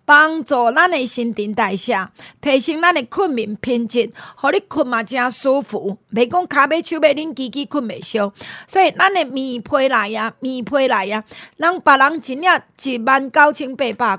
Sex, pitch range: female, 230-320 Hz